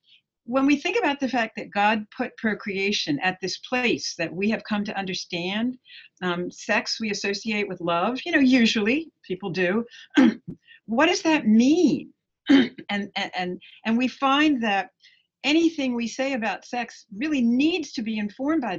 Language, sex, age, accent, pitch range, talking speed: English, female, 60-79, American, 190-275 Hz, 165 wpm